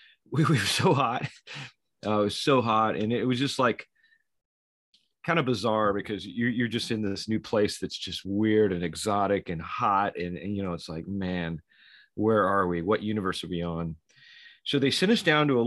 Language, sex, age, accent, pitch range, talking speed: English, male, 40-59, American, 105-135 Hz, 205 wpm